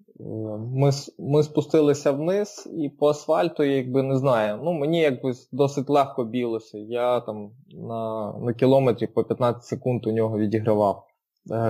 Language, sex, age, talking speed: Ukrainian, male, 20-39, 140 wpm